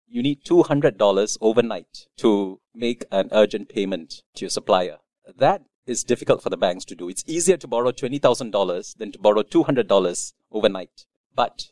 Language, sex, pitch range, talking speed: English, male, 110-150 Hz, 160 wpm